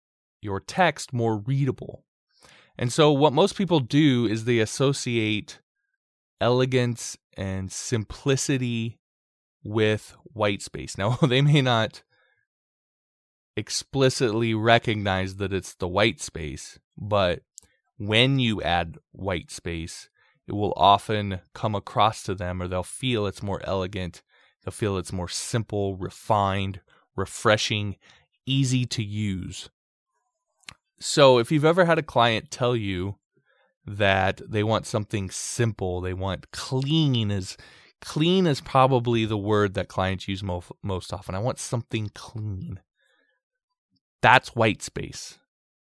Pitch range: 95-130 Hz